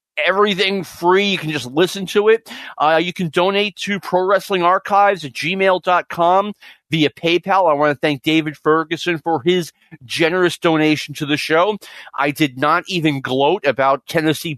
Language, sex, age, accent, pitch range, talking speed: English, male, 40-59, American, 155-195 Hz, 165 wpm